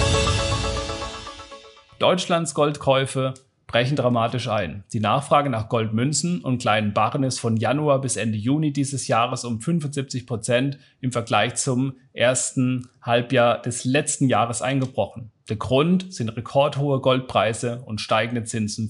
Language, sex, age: German, male, 40-59